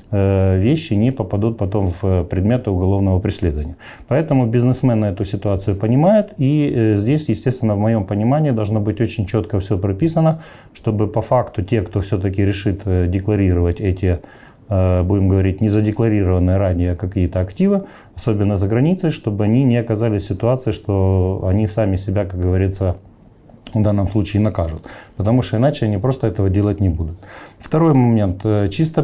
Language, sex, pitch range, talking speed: Ukrainian, male, 95-120 Hz, 150 wpm